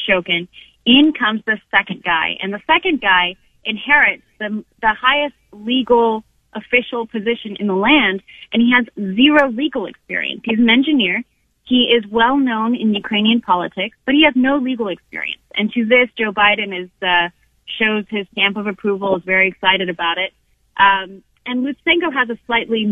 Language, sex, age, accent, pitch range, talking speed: English, female, 30-49, American, 190-240 Hz, 170 wpm